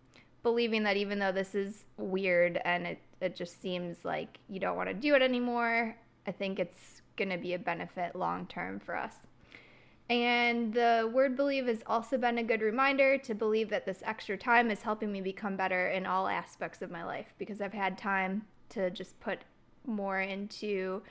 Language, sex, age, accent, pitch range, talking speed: English, female, 20-39, American, 195-235 Hz, 190 wpm